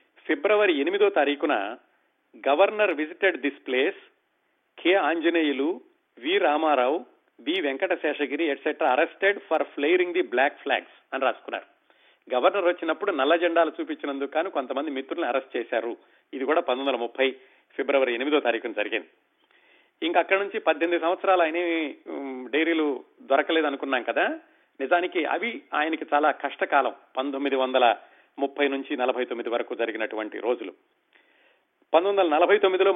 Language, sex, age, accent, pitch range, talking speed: Telugu, male, 40-59, native, 140-190 Hz, 115 wpm